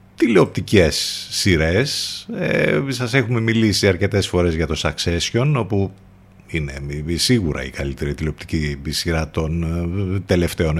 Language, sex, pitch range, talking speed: Greek, male, 90-120 Hz, 110 wpm